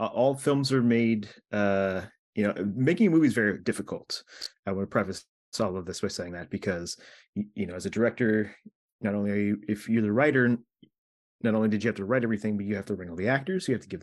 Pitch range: 95-120 Hz